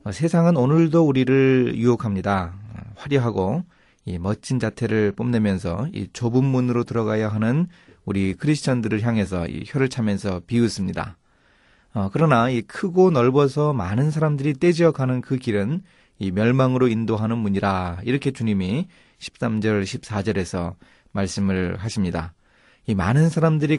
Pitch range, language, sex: 100-130 Hz, Korean, male